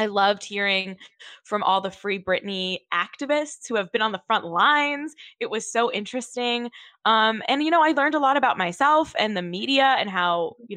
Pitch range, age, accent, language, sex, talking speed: 185-240 Hz, 20-39, American, English, female, 200 wpm